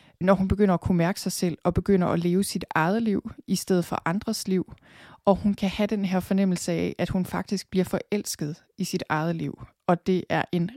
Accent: native